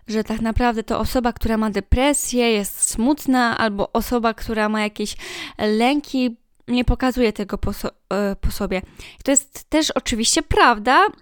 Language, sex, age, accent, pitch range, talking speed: Polish, female, 10-29, native, 225-265 Hz, 145 wpm